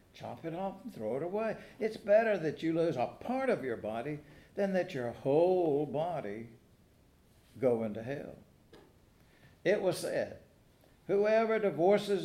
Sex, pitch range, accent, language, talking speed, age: male, 115-170 Hz, American, English, 145 wpm, 60-79